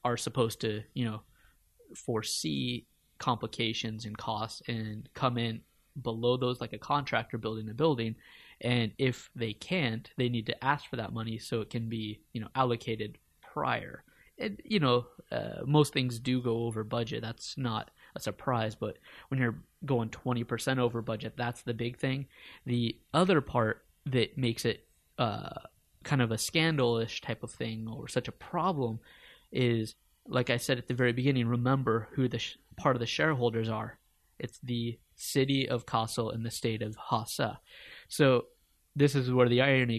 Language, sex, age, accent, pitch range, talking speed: English, male, 20-39, American, 115-130 Hz, 170 wpm